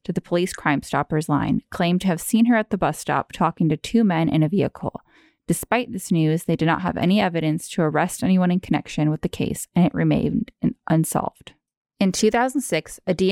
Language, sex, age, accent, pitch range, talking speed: English, female, 20-39, American, 165-205 Hz, 205 wpm